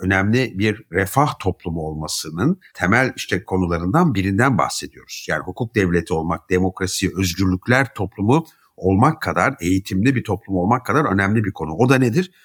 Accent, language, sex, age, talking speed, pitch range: native, Turkish, male, 60-79, 145 wpm, 90-125 Hz